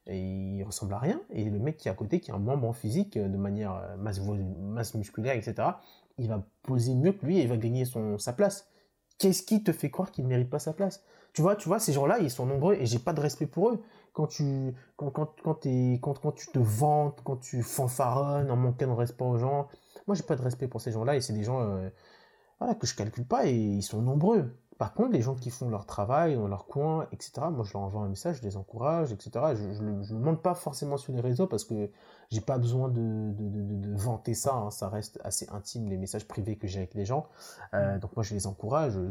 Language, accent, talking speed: French, French, 260 wpm